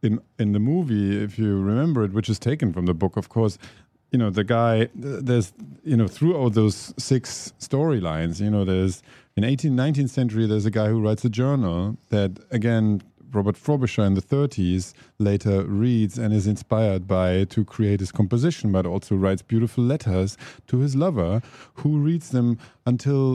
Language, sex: English, male